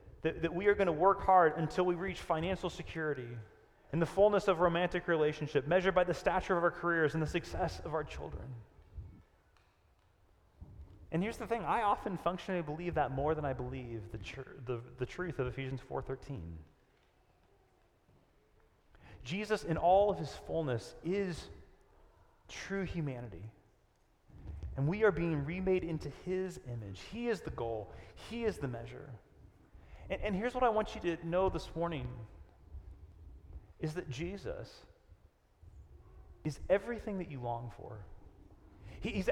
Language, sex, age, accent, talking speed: English, male, 30-49, American, 150 wpm